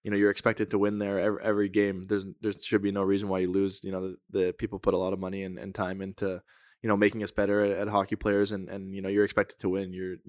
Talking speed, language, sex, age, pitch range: 295 wpm, English, male, 20-39, 95-110 Hz